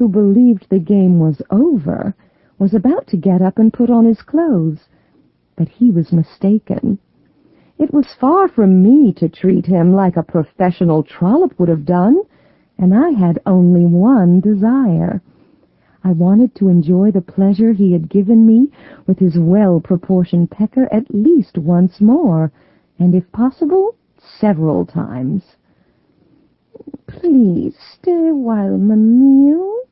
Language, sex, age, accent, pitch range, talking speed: English, female, 50-69, American, 175-250 Hz, 135 wpm